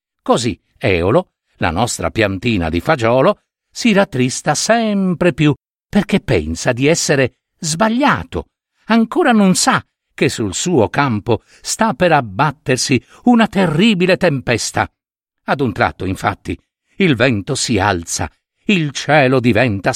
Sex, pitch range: male, 115-195 Hz